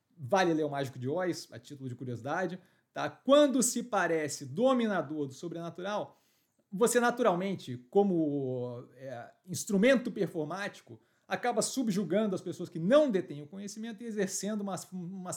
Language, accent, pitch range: Portuguese, Brazilian, 155-210 Hz